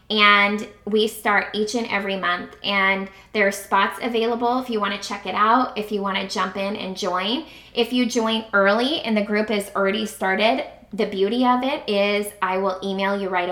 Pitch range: 195-240 Hz